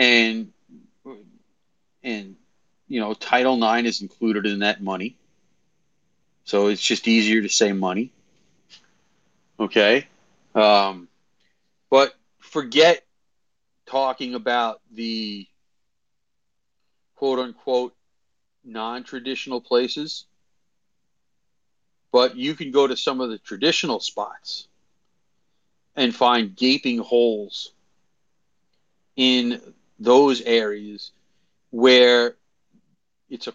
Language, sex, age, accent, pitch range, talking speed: English, male, 40-59, American, 110-130 Hz, 90 wpm